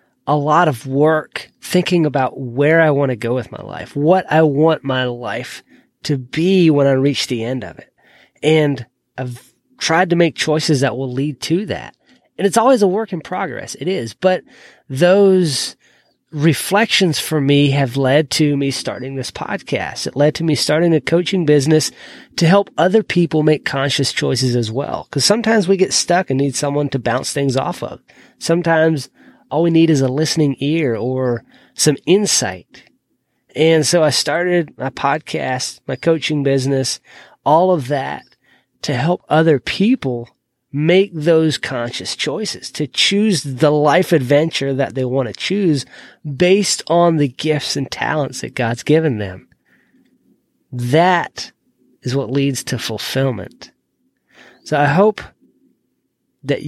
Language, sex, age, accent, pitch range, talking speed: English, male, 30-49, American, 135-170 Hz, 160 wpm